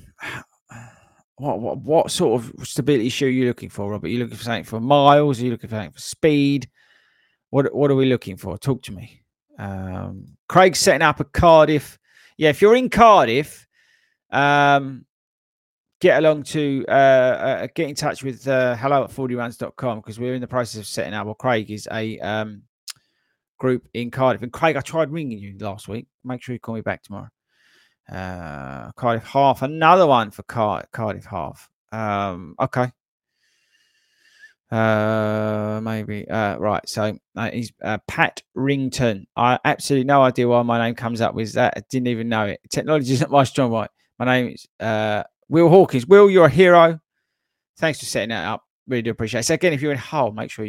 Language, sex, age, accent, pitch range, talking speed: English, male, 30-49, British, 110-140 Hz, 190 wpm